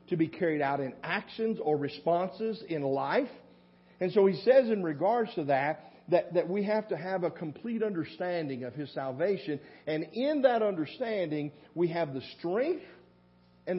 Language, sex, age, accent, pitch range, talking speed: English, male, 50-69, American, 115-175 Hz, 170 wpm